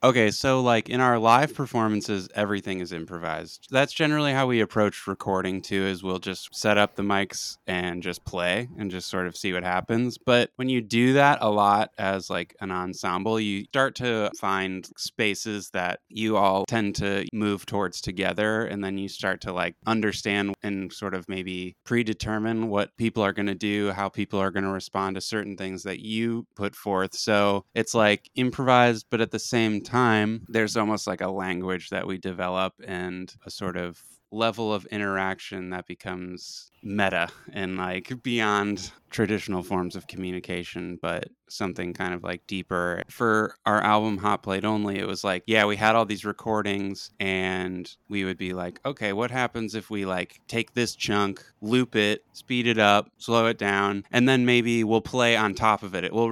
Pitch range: 95-110 Hz